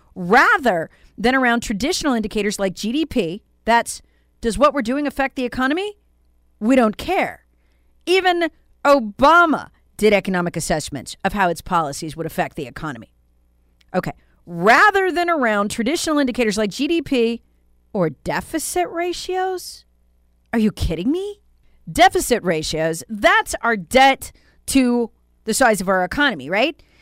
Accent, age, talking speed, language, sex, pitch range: American, 40-59, 130 wpm, English, female, 195-320 Hz